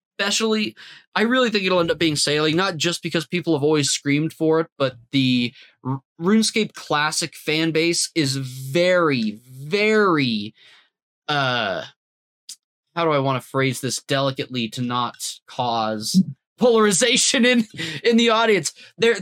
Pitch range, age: 140-185 Hz, 20-39